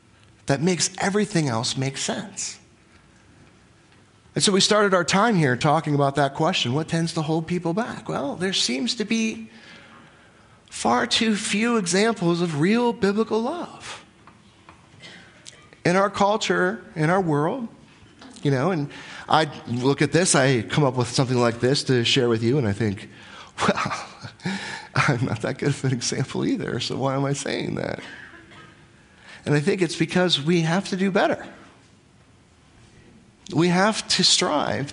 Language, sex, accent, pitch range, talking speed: English, male, American, 150-200 Hz, 160 wpm